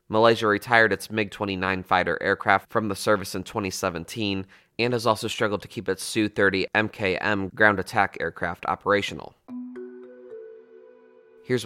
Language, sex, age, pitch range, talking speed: English, male, 30-49, 95-110 Hz, 120 wpm